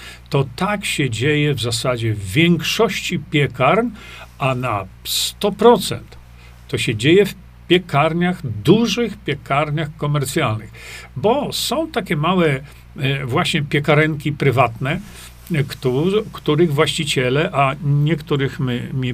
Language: Polish